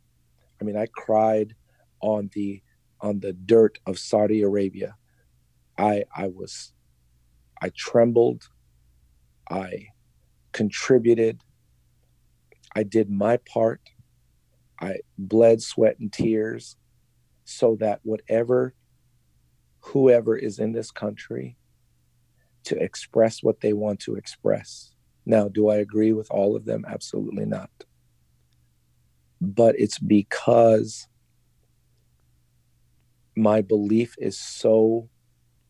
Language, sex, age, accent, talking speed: English, male, 50-69, American, 100 wpm